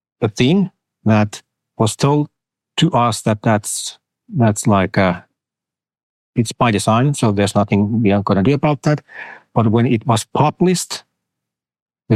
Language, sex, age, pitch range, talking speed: English, male, 50-69, 100-130 Hz, 155 wpm